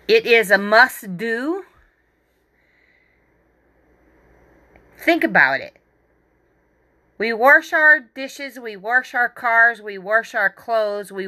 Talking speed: 105 wpm